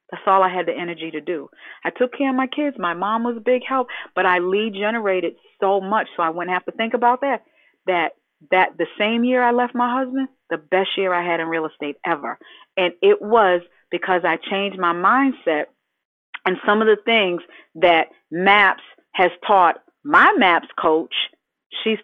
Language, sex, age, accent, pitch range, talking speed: English, female, 40-59, American, 180-240 Hz, 200 wpm